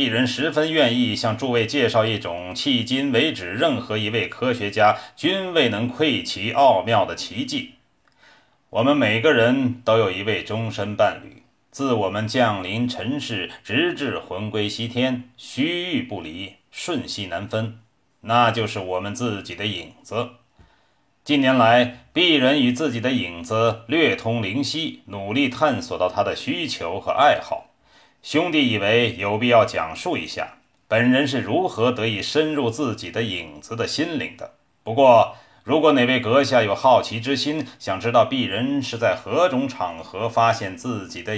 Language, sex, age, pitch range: Chinese, male, 30-49, 105-130 Hz